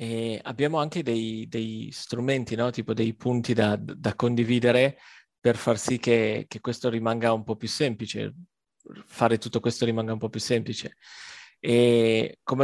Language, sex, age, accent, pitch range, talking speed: Italian, male, 30-49, native, 120-150 Hz, 160 wpm